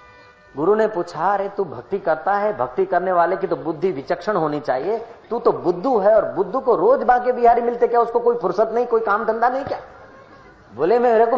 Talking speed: 215 wpm